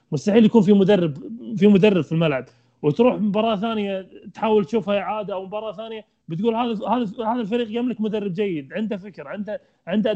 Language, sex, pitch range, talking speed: Arabic, male, 170-220 Hz, 170 wpm